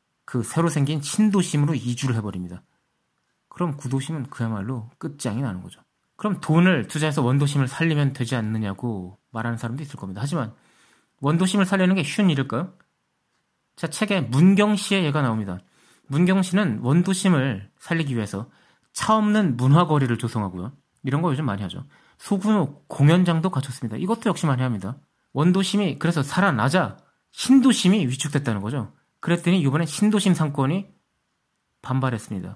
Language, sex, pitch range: Korean, male, 120-170 Hz